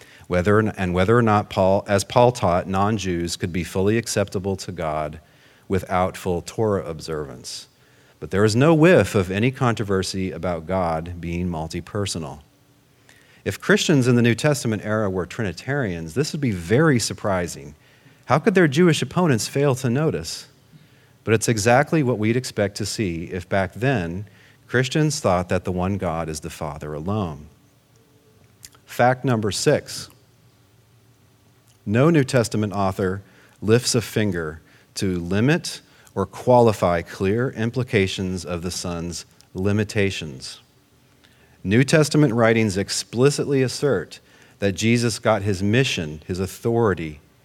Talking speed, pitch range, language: 135 wpm, 95-130 Hz, English